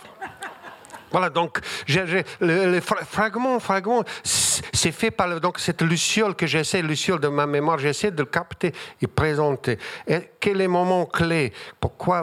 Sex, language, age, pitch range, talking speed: male, French, 50-69, 135-170 Hz, 155 wpm